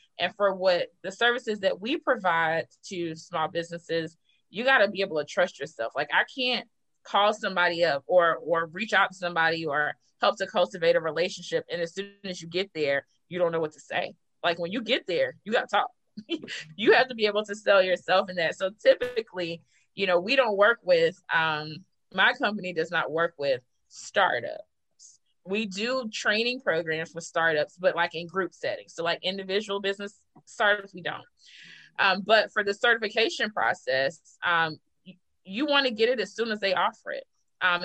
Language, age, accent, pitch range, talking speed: English, 20-39, American, 170-215 Hz, 195 wpm